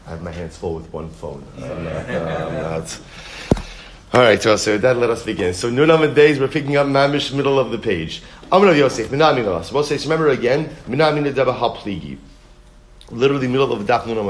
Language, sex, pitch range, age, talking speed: English, male, 120-150 Hz, 30-49, 170 wpm